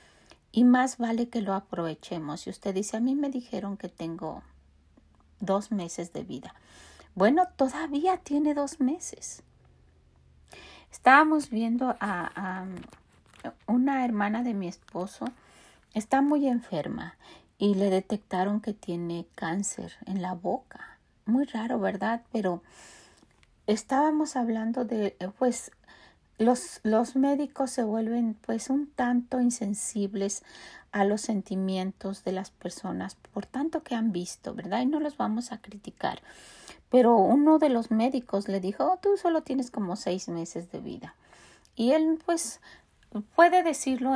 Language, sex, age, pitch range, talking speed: Spanish, female, 40-59, 195-265 Hz, 135 wpm